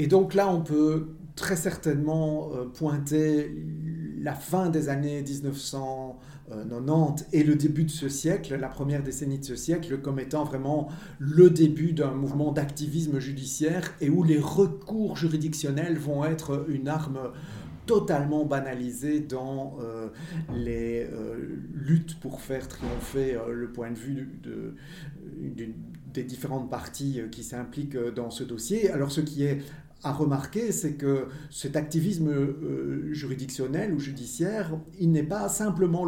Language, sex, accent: French, male, French